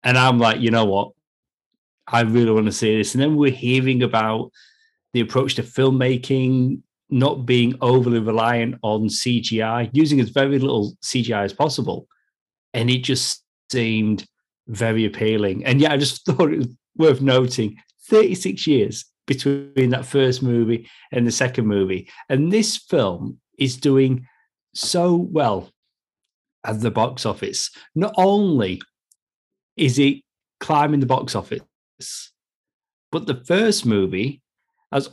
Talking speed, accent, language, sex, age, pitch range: 140 wpm, British, English, male, 40-59, 115-140 Hz